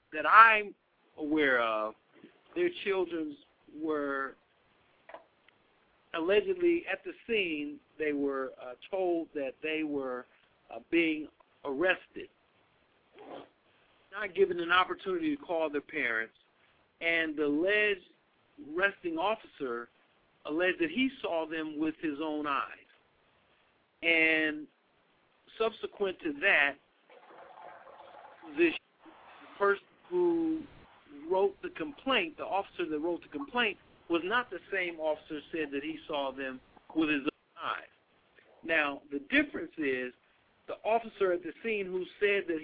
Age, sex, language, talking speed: 50-69, male, English, 120 wpm